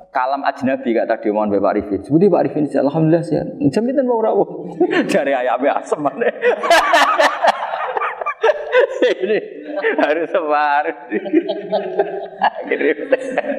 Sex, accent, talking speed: male, native, 110 wpm